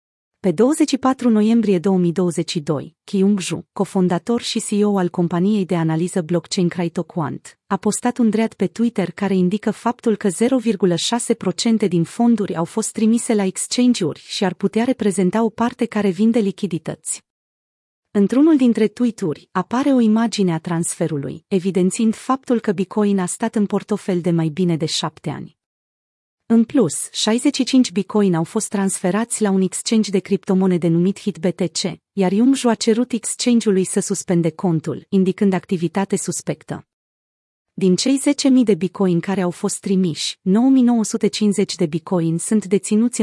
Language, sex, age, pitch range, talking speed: Romanian, female, 30-49, 180-225 Hz, 145 wpm